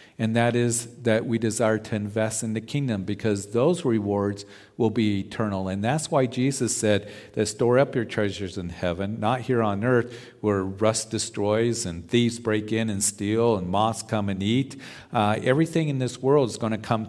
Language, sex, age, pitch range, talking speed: English, male, 50-69, 105-125 Hz, 195 wpm